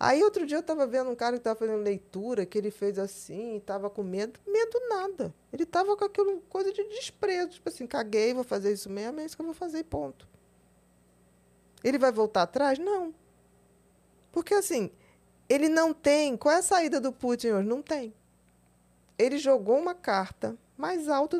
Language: Portuguese